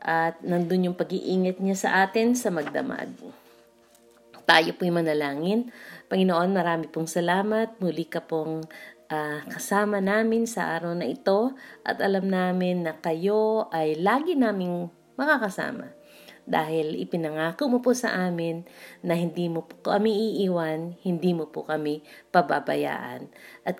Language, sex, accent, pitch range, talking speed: Filipino, female, native, 160-220 Hz, 130 wpm